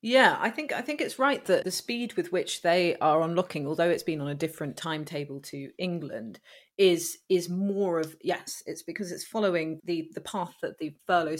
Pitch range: 160-195 Hz